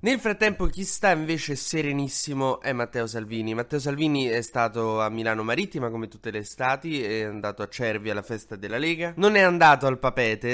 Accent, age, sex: native, 20-39, male